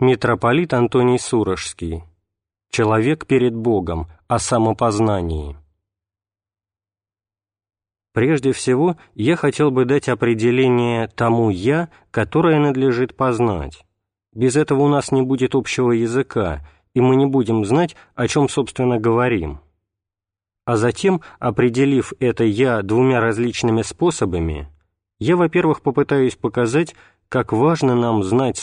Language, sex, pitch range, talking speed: Russian, male, 100-135 Hz, 110 wpm